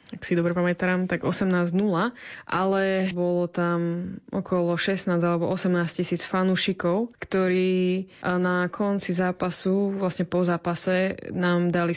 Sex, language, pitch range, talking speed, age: female, Slovak, 170-185 Hz, 120 wpm, 20-39